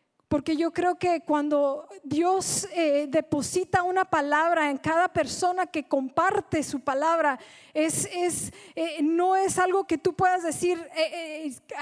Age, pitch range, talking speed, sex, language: 40-59, 305-385 Hz, 145 wpm, female, Spanish